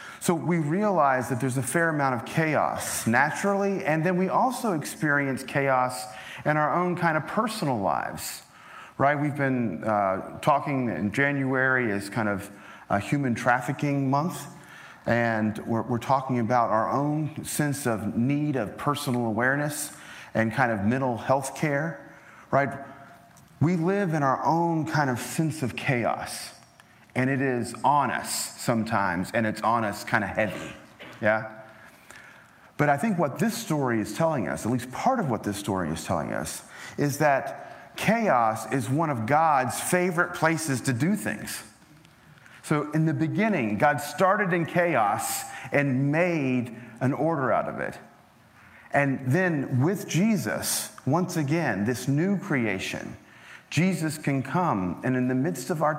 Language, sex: English, male